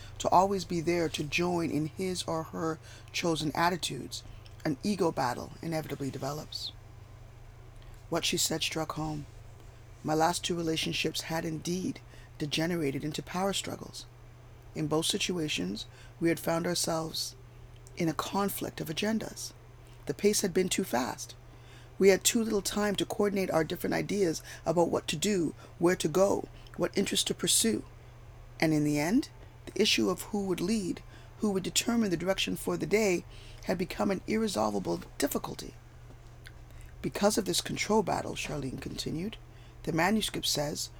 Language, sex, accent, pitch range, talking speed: English, female, American, 120-175 Hz, 150 wpm